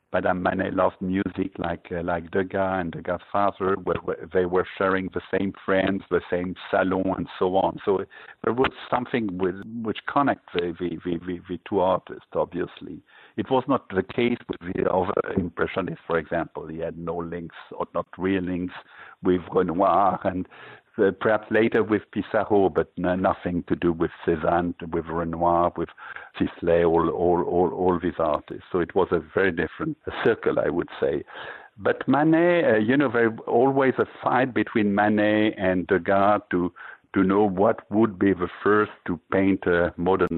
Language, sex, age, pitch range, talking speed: English, male, 60-79, 90-100 Hz, 180 wpm